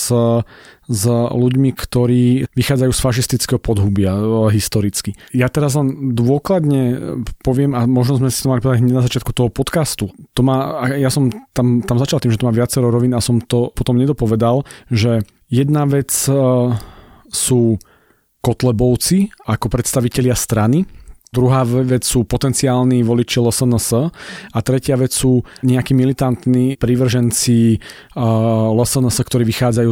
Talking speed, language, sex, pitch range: 130 wpm, Slovak, male, 110-130 Hz